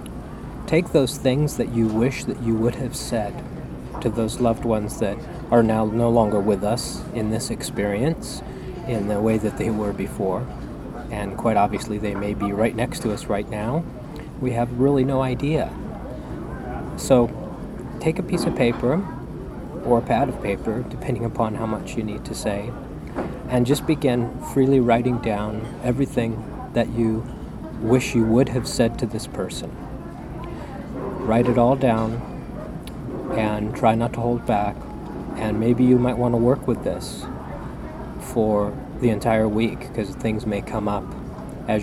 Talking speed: 165 wpm